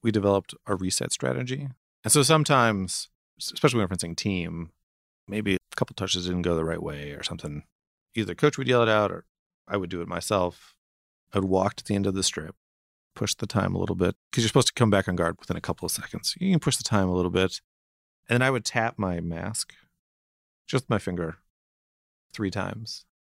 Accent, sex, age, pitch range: American, male, 30-49, 85-115 Hz